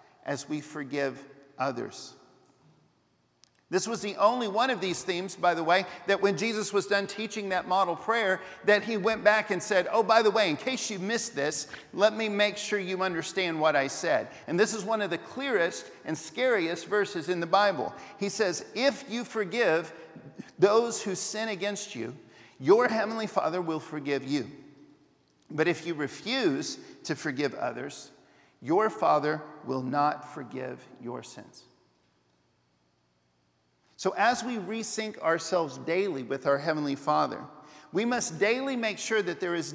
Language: English